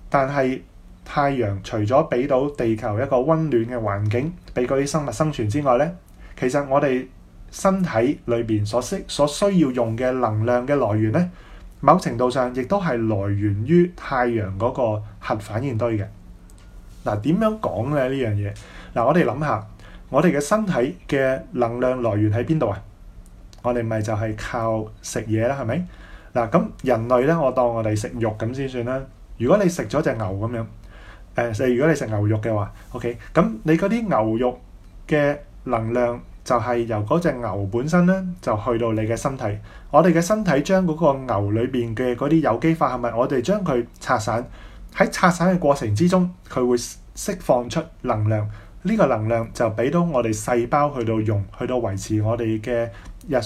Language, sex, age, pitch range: Chinese, male, 20-39, 110-145 Hz